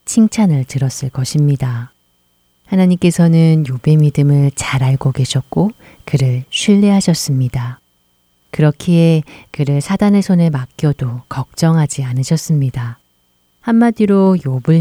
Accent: native